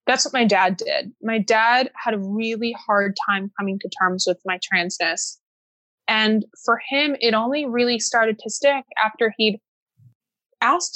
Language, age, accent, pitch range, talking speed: English, 20-39, American, 205-260 Hz, 165 wpm